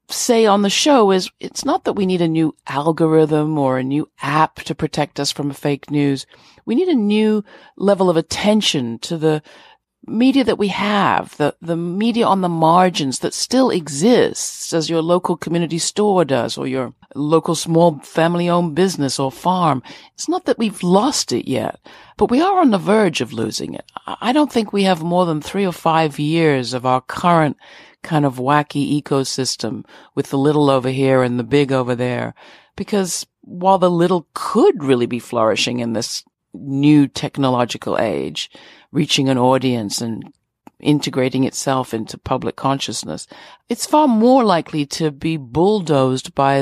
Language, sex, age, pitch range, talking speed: English, female, 60-79, 135-195 Hz, 180 wpm